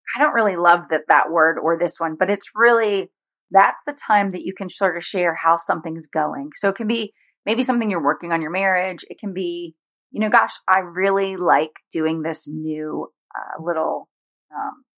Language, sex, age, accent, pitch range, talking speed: English, female, 30-49, American, 170-220 Hz, 205 wpm